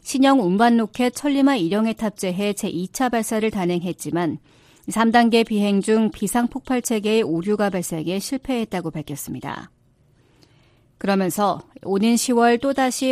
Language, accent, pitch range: Korean, native, 175-235 Hz